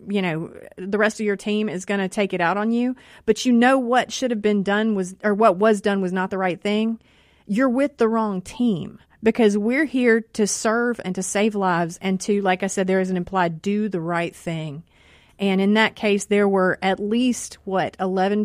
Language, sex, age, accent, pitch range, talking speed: English, female, 30-49, American, 180-215 Hz, 230 wpm